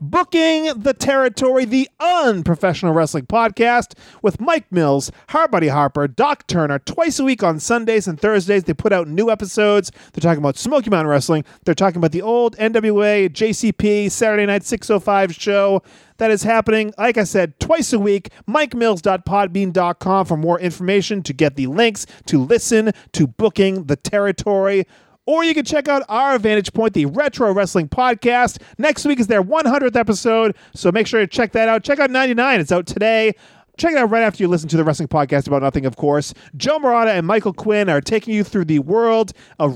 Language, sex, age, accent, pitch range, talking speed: English, male, 40-59, American, 170-230 Hz, 185 wpm